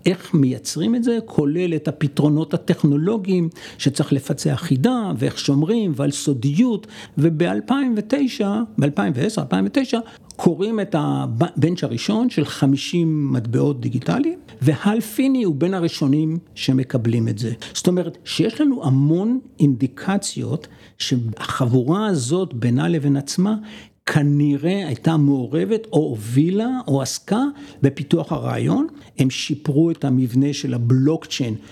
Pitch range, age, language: 135-170 Hz, 60-79, Hebrew